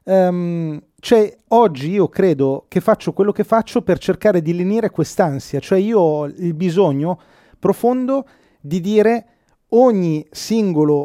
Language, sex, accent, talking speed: Italian, male, native, 130 wpm